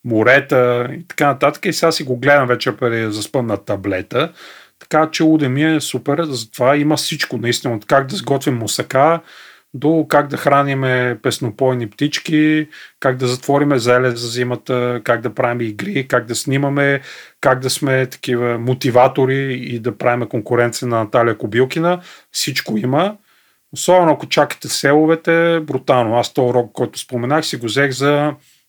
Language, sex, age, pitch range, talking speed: Bulgarian, male, 40-59, 120-150 Hz, 155 wpm